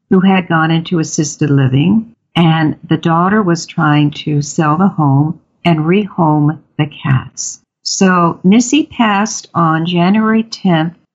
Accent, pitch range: American, 155-210 Hz